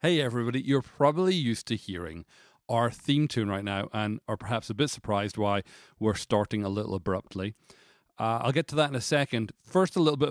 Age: 30-49